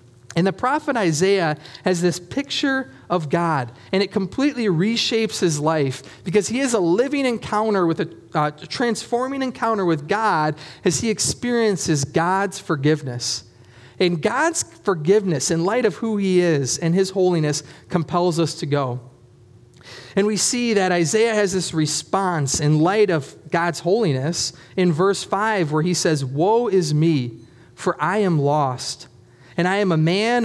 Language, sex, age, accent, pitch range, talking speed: English, male, 30-49, American, 155-205 Hz, 160 wpm